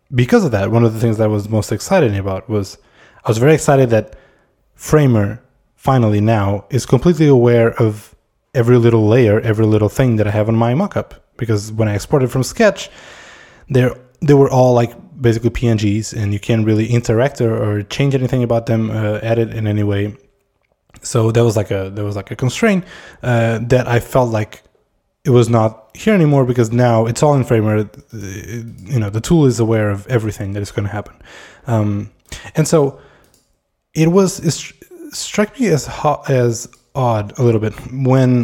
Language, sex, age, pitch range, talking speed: English, male, 20-39, 110-135 Hz, 190 wpm